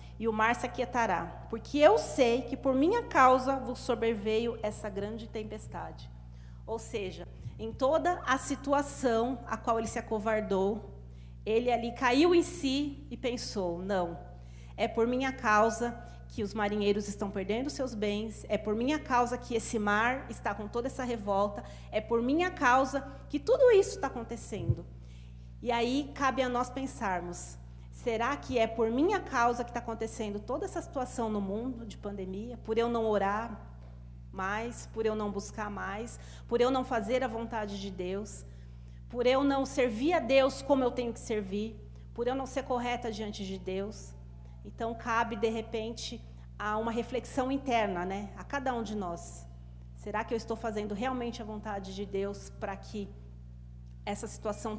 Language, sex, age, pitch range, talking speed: Portuguese, female, 40-59, 185-250 Hz, 170 wpm